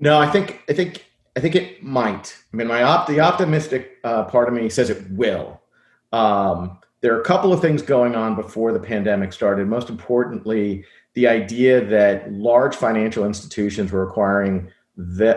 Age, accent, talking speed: 40-59, American, 180 wpm